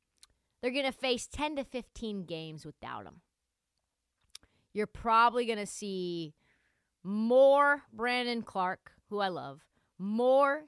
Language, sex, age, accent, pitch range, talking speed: English, female, 30-49, American, 175-280 Hz, 125 wpm